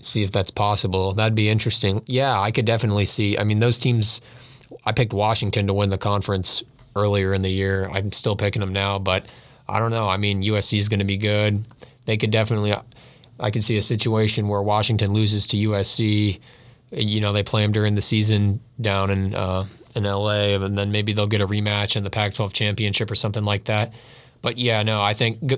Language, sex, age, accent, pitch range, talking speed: English, male, 20-39, American, 100-115 Hz, 215 wpm